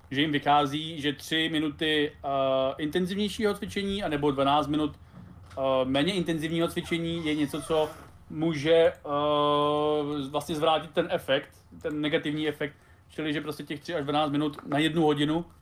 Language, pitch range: Czech, 140-160 Hz